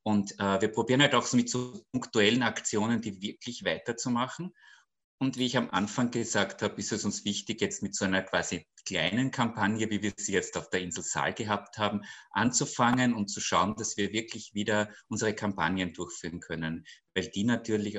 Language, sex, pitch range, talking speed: German, male, 100-120 Hz, 185 wpm